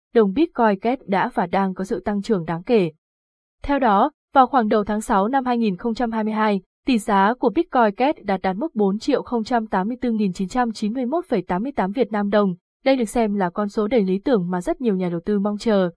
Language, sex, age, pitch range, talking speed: Vietnamese, female, 20-39, 195-245 Hz, 190 wpm